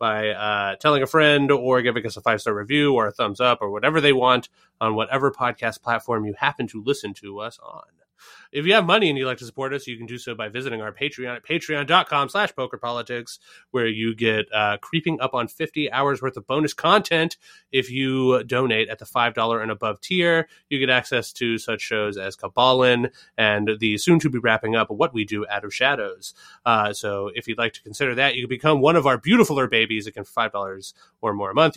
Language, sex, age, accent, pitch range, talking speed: English, male, 30-49, American, 110-145 Hz, 230 wpm